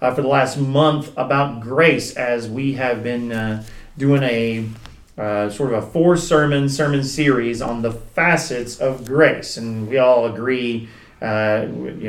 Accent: American